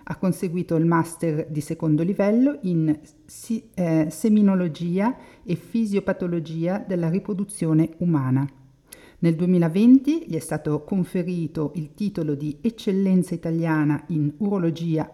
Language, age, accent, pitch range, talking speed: Italian, 50-69, native, 155-200 Hz, 110 wpm